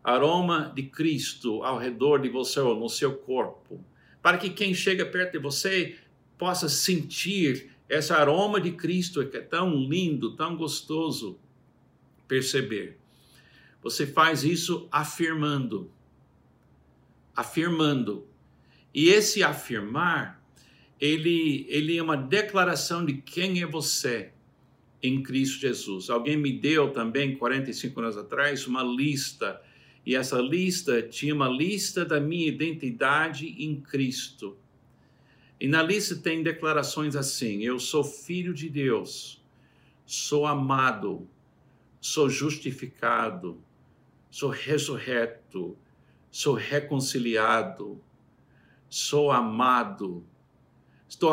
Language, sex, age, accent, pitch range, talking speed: Portuguese, male, 60-79, Brazilian, 130-160 Hz, 110 wpm